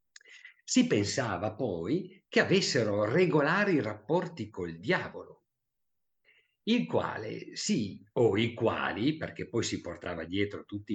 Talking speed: 115 wpm